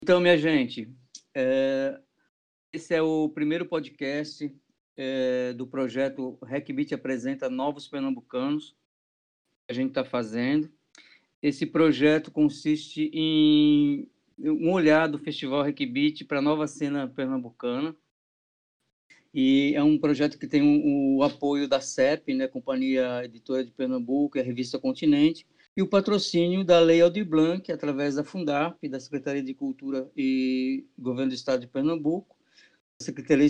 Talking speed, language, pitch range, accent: 135 wpm, Portuguese, 140-170 Hz, Brazilian